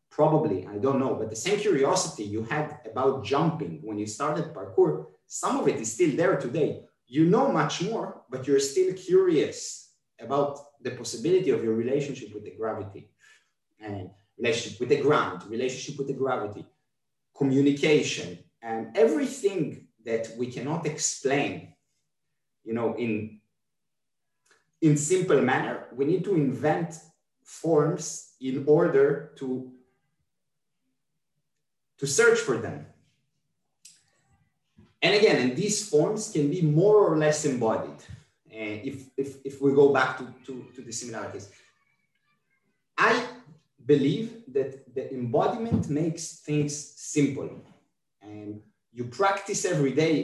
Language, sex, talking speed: English, male, 135 wpm